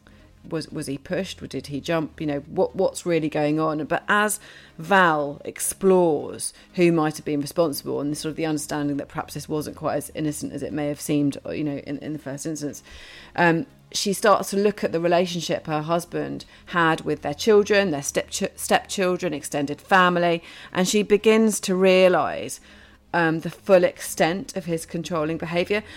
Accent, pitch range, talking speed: British, 150-185 Hz, 185 wpm